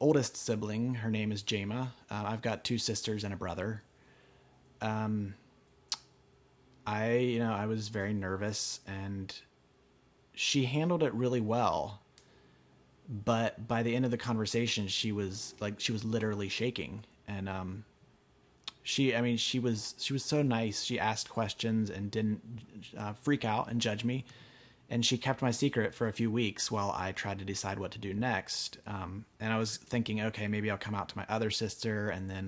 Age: 30-49